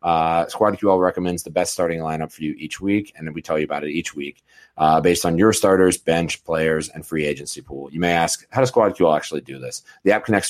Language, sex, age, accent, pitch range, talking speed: English, male, 30-49, American, 80-105 Hz, 245 wpm